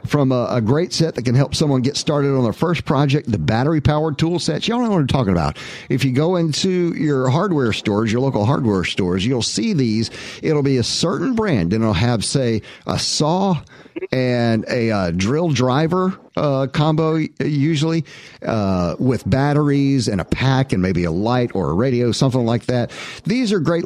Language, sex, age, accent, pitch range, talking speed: English, male, 50-69, American, 115-155 Hz, 195 wpm